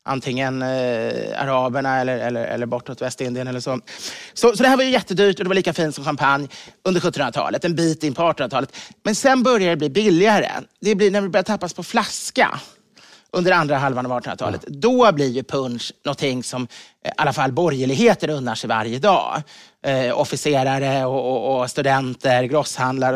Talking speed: 185 wpm